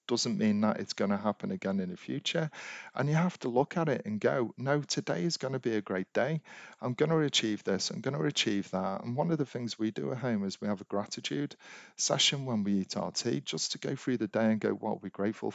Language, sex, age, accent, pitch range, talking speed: English, male, 40-59, British, 105-130 Hz, 270 wpm